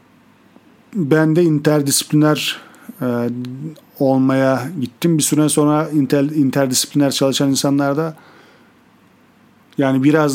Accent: native